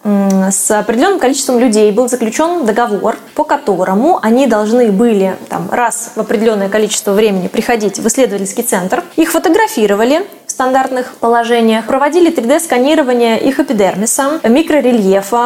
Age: 20-39